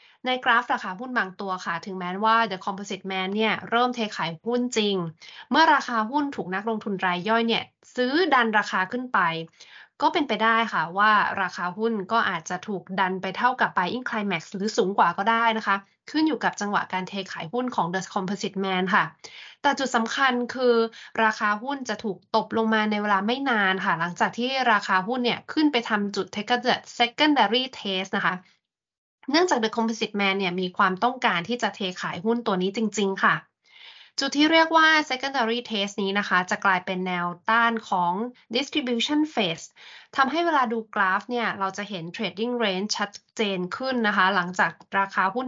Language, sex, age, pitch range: Thai, female, 20-39, 190-240 Hz